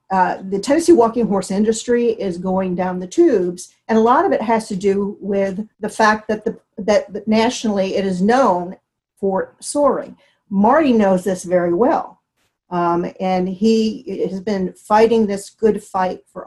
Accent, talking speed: American, 170 wpm